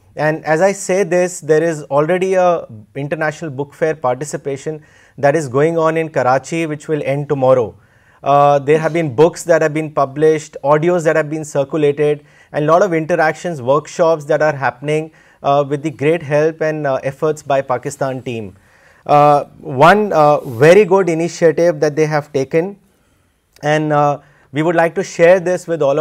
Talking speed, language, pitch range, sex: 175 wpm, Urdu, 145-170 Hz, male